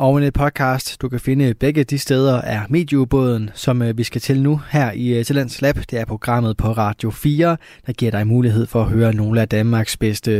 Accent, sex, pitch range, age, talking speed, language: native, male, 115-145 Hz, 20-39, 215 wpm, Danish